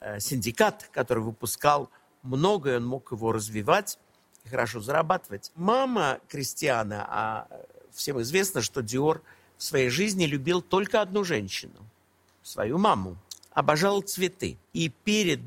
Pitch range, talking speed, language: 130-185 Hz, 120 wpm, Russian